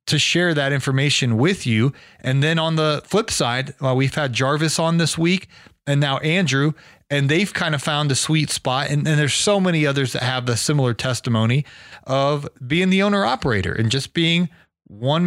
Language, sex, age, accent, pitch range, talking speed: English, male, 30-49, American, 125-165 Hz, 195 wpm